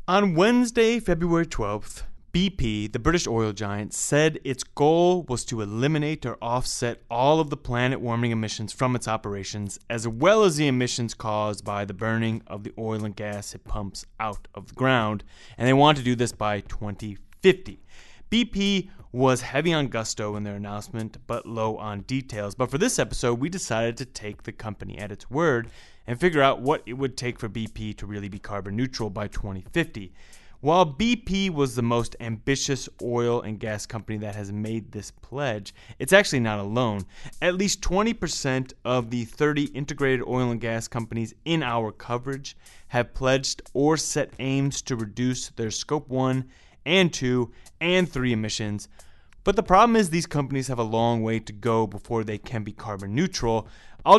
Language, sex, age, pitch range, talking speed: English, male, 20-39, 105-135 Hz, 180 wpm